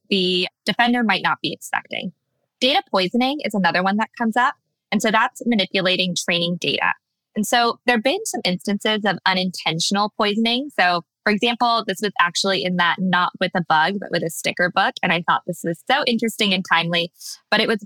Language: English